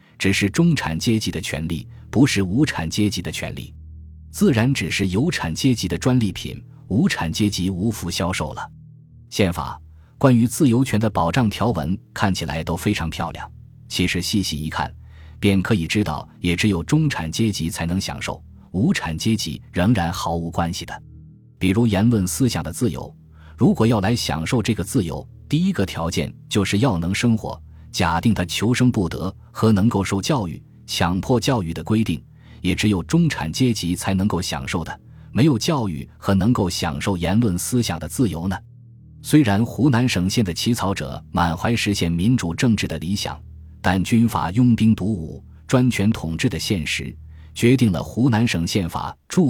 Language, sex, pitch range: Chinese, male, 85-115 Hz